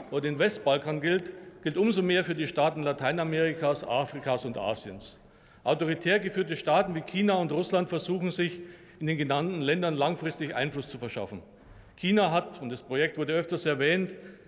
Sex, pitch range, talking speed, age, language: male, 150-180 Hz, 160 wpm, 50-69, German